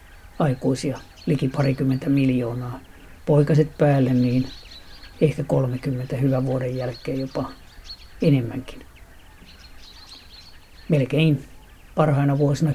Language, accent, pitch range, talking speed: Finnish, native, 90-145 Hz, 80 wpm